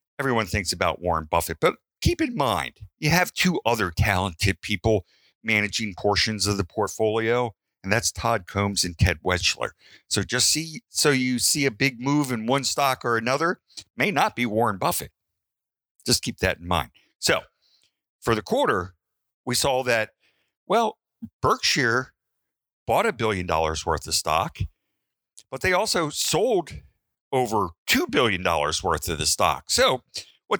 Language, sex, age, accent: English, male, 50-69, American